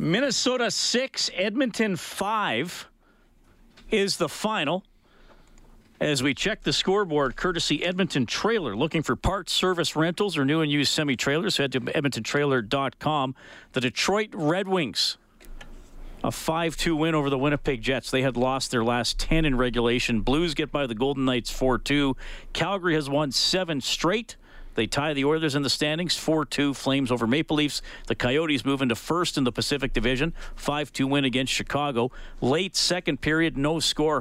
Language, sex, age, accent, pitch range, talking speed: English, male, 50-69, American, 130-160 Hz, 155 wpm